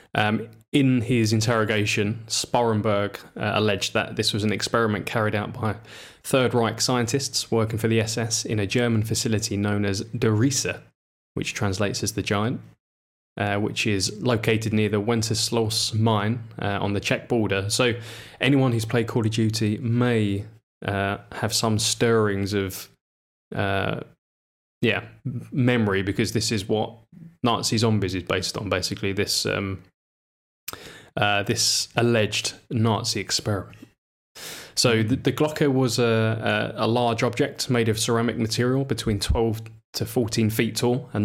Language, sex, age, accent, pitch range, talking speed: English, male, 20-39, British, 105-120 Hz, 145 wpm